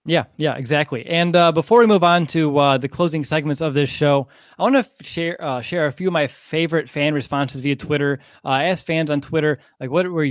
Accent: American